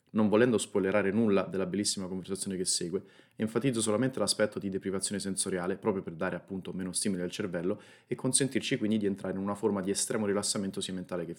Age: 30-49